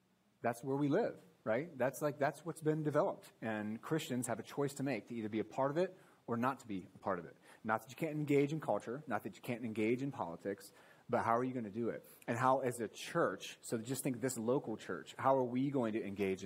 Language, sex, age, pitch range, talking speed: English, male, 30-49, 110-140 Hz, 265 wpm